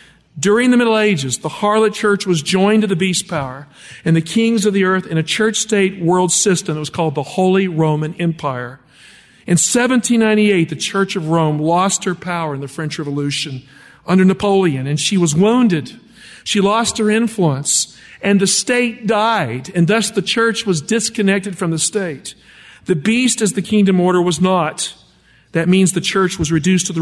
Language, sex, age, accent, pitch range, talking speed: English, male, 50-69, American, 160-205 Hz, 185 wpm